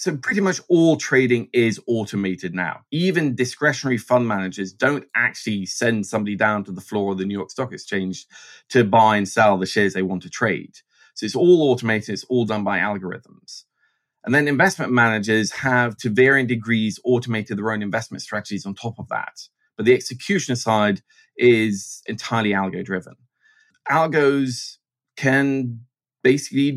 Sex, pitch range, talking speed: male, 110-145 Hz, 160 wpm